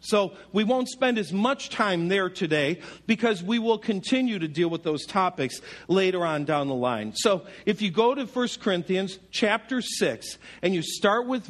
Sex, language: male, English